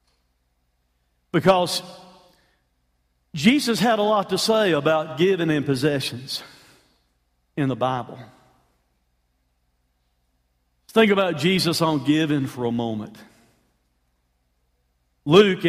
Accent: American